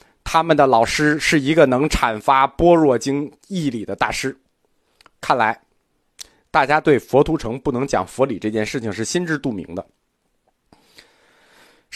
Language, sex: Chinese, male